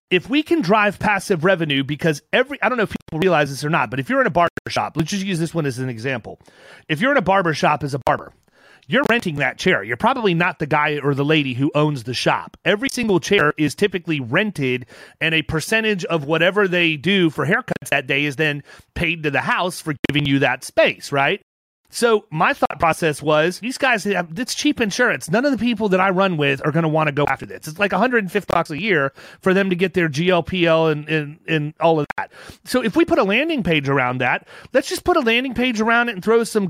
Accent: American